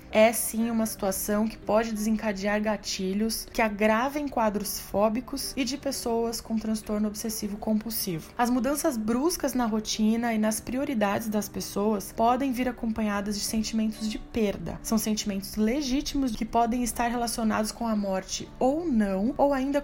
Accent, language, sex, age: Brazilian, Portuguese, female, 20-39